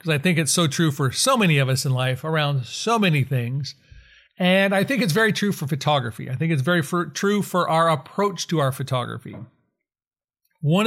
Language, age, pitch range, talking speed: English, 40-59, 135-180 Hz, 200 wpm